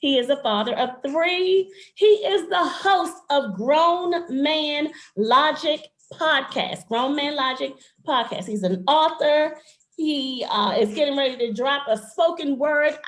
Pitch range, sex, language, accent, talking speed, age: 270-340 Hz, female, English, American, 145 wpm, 30-49